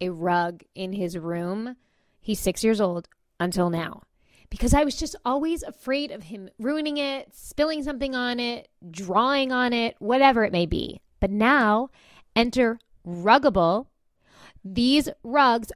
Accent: American